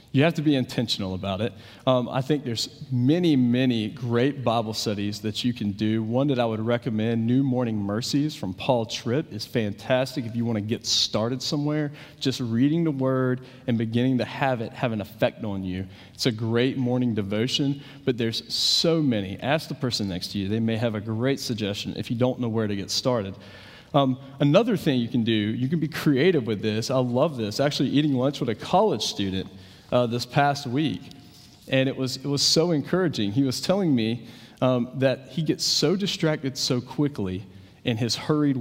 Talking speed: 205 wpm